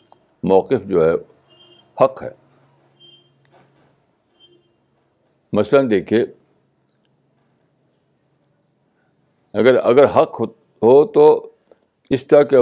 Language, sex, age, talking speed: Urdu, male, 60-79, 70 wpm